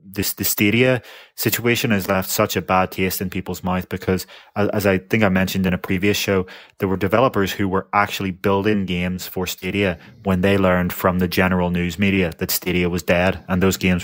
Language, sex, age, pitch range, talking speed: English, male, 20-39, 95-105 Hz, 205 wpm